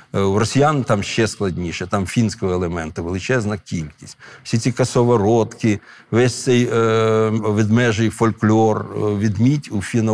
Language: Ukrainian